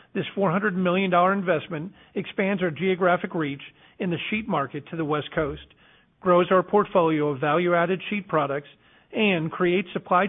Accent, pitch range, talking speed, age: American, 150-185 Hz, 150 wpm, 50-69